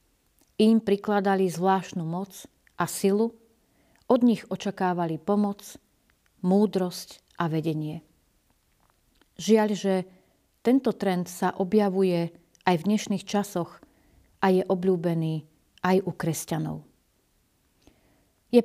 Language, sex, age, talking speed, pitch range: Slovak, female, 40-59, 95 wpm, 180-215 Hz